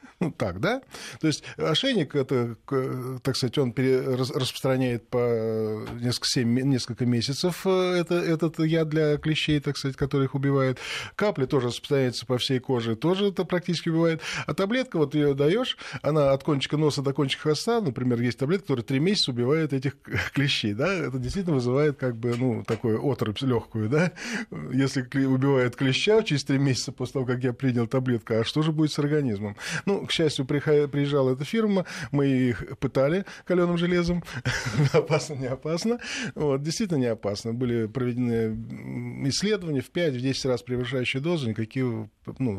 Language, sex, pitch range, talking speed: Russian, male, 125-160 Hz, 160 wpm